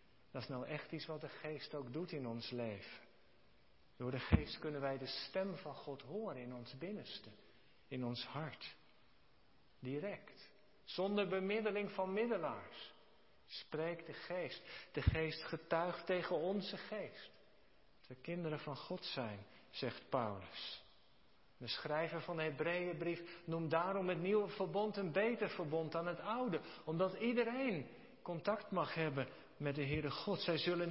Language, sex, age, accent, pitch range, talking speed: Dutch, male, 50-69, Dutch, 145-195 Hz, 150 wpm